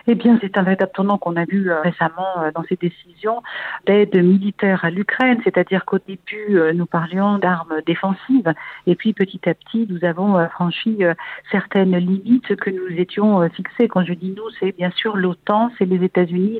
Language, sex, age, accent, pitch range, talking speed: French, female, 50-69, French, 180-220 Hz, 175 wpm